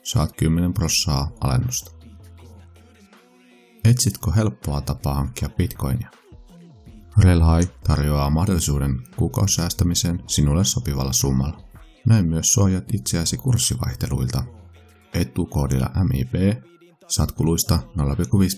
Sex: male